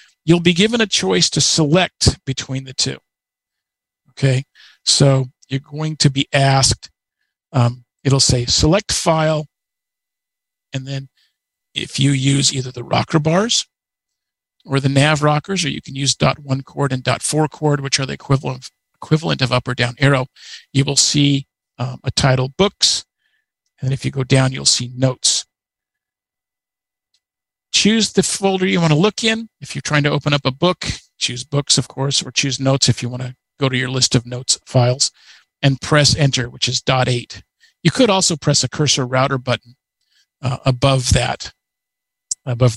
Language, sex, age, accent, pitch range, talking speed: English, male, 50-69, American, 130-155 Hz, 175 wpm